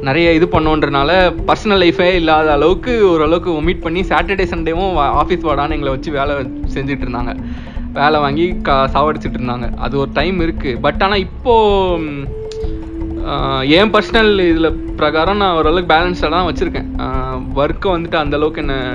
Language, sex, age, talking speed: Tamil, male, 20-39, 135 wpm